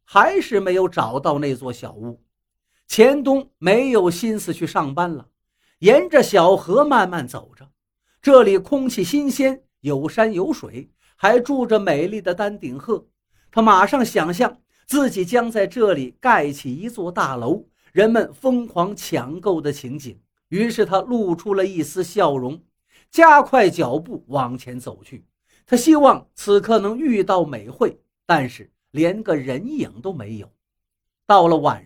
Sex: male